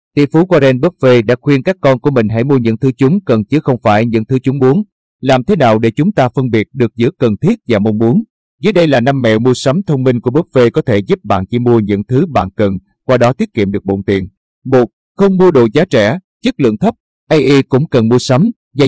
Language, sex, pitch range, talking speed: Vietnamese, male, 110-150 Hz, 260 wpm